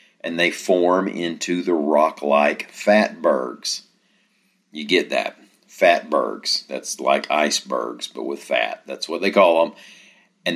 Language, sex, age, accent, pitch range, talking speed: English, male, 40-59, American, 75-95 Hz, 130 wpm